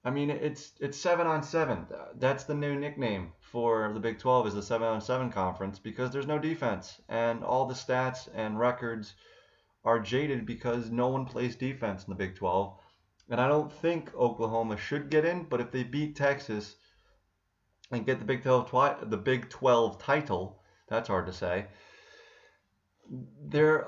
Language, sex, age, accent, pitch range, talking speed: English, male, 30-49, American, 110-135 Hz, 175 wpm